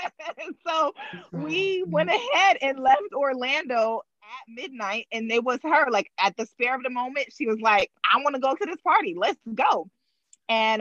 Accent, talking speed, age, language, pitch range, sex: American, 180 wpm, 20-39, English, 195-250 Hz, female